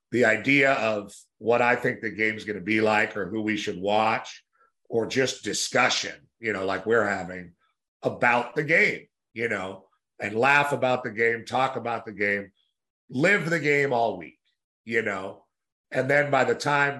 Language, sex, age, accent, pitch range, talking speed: English, male, 50-69, American, 110-130 Hz, 180 wpm